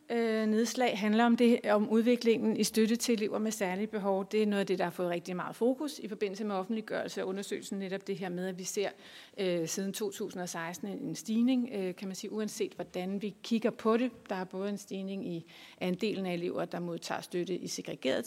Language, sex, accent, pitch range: Danish, female, native, 185-220 Hz